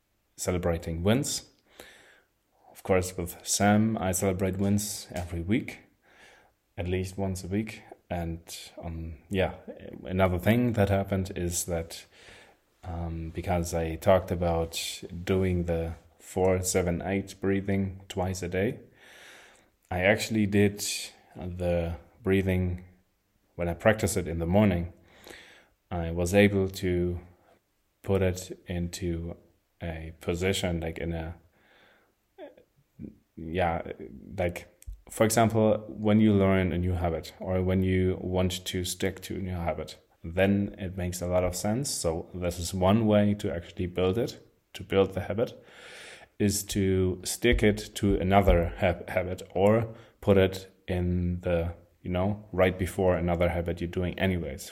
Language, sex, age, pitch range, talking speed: German, male, 30-49, 85-100 Hz, 135 wpm